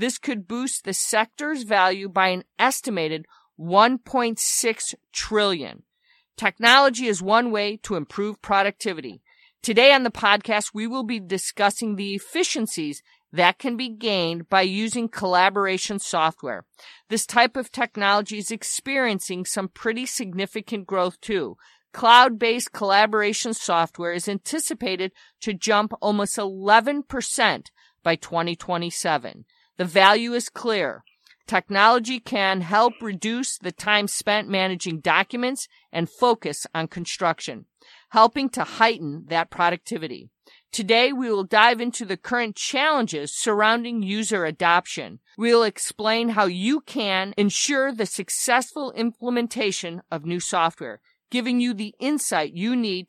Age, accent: 50-69, American